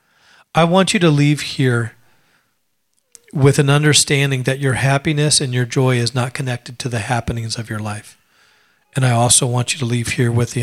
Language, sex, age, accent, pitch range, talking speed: English, male, 40-59, American, 120-140 Hz, 190 wpm